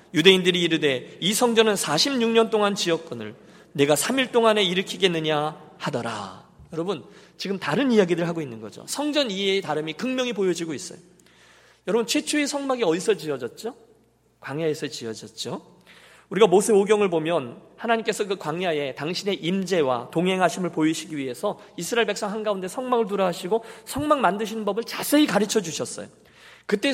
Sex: male